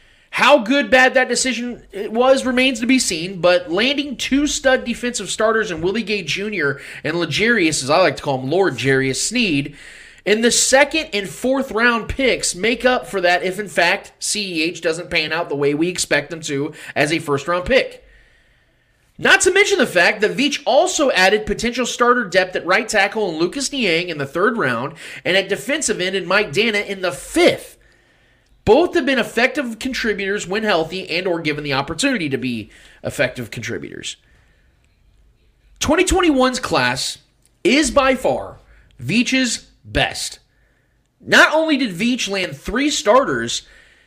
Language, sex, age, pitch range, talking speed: English, male, 30-49, 165-255 Hz, 165 wpm